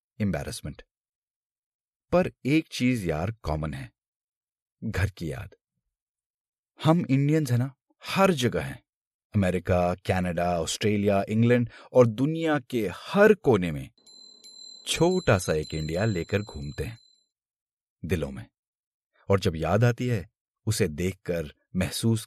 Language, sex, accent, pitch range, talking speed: Hindi, male, native, 90-125 Hz, 120 wpm